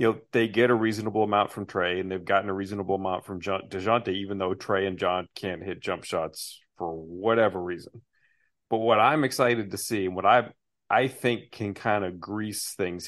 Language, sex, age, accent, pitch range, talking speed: English, male, 40-59, American, 95-115 Hz, 200 wpm